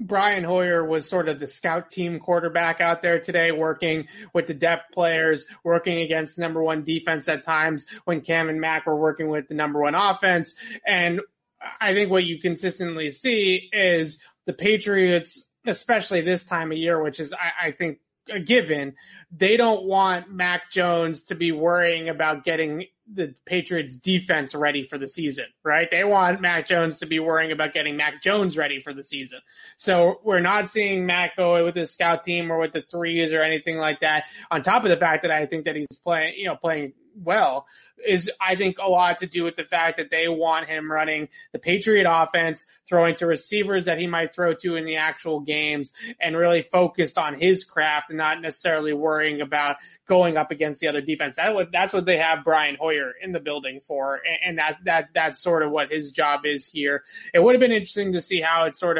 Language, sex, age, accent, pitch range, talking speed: English, male, 30-49, American, 155-180 Hz, 205 wpm